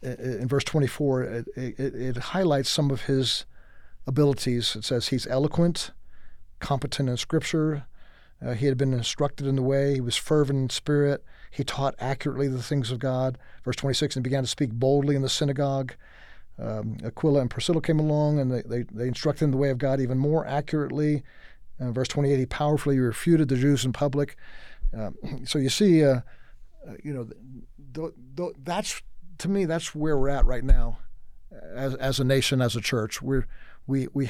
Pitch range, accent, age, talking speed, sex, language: 125-145 Hz, American, 50-69, 185 wpm, male, English